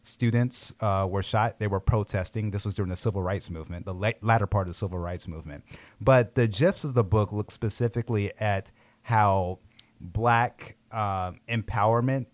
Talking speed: 175 wpm